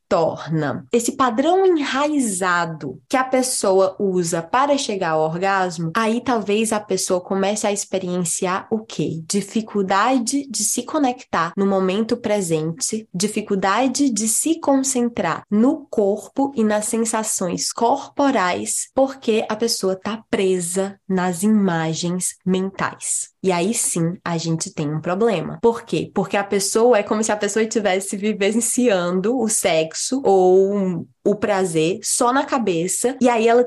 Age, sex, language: 20-39, female, Portuguese